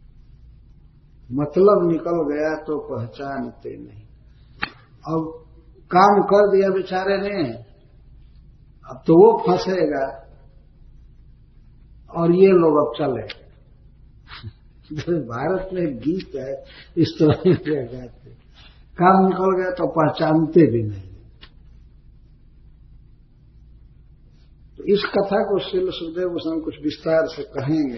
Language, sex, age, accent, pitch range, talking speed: Hindi, male, 50-69, native, 130-165 Hz, 100 wpm